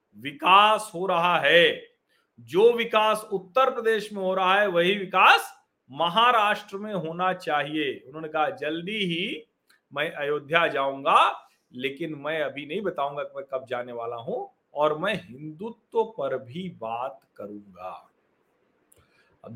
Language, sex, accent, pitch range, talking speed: Hindi, male, native, 145-190 Hz, 135 wpm